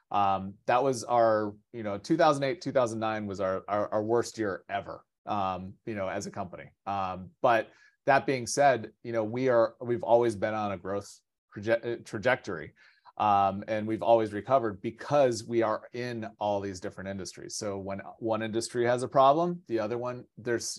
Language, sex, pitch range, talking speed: English, male, 105-125 Hz, 180 wpm